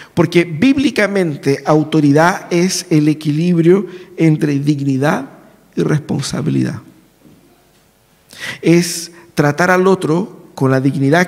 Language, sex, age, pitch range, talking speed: Spanish, male, 50-69, 155-195 Hz, 90 wpm